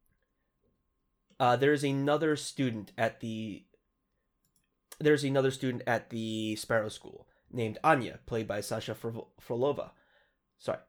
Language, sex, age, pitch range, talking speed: English, male, 20-39, 115-145 Hz, 120 wpm